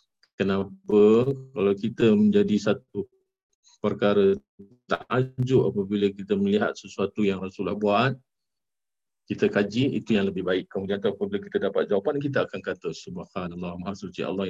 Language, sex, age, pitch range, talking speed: Malay, male, 50-69, 100-140 Hz, 140 wpm